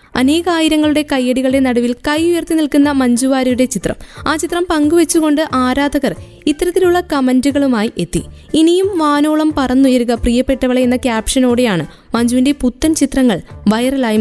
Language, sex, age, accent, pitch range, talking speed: Malayalam, female, 20-39, native, 255-315 Hz, 105 wpm